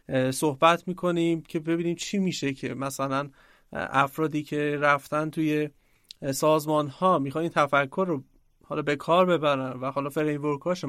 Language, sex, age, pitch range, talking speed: Persian, male, 30-49, 145-185 Hz, 145 wpm